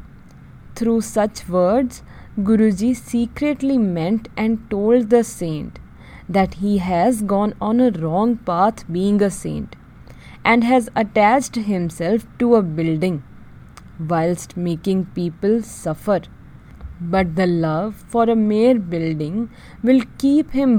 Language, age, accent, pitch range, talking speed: English, 20-39, Indian, 175-230 Hz, 120 wpm